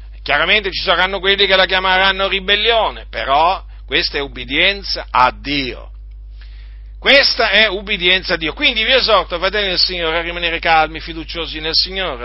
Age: 50-69